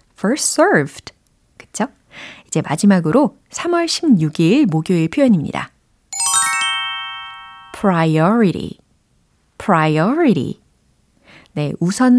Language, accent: Korean, native